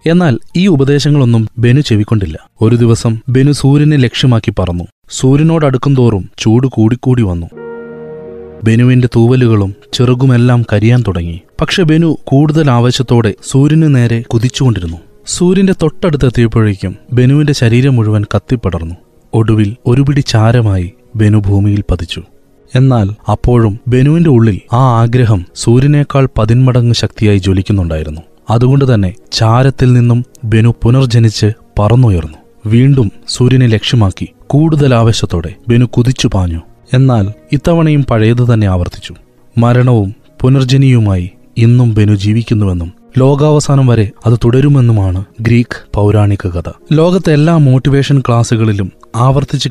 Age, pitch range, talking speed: 30-49, 105-130 Hz, 100 wpm